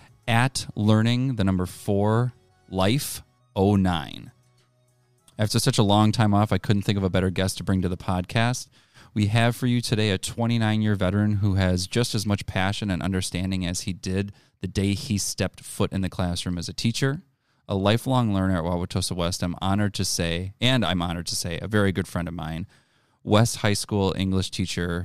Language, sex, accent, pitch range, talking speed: English, male, American, 95-120 Hz, 190 wpm